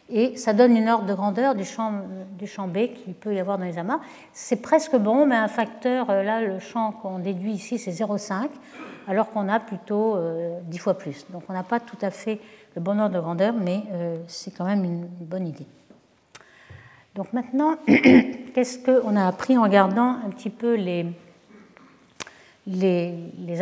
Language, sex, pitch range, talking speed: French, female, 190-250 Hz, 180 wpm